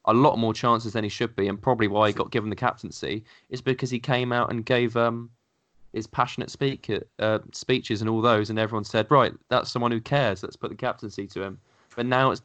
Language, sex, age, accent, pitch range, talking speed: English, male, 20-39, British, 105-125 Hz, 235 wpm